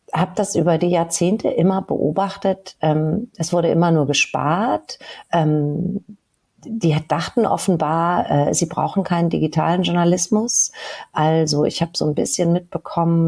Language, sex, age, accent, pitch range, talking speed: German, female, 40-59, German, 150-190 Hz, 125 wpm